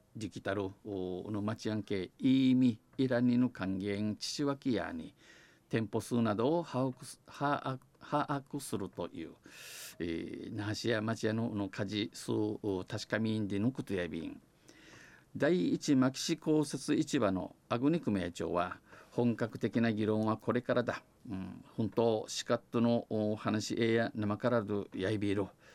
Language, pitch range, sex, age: Japanese, 105-130 Hz, male, 50-69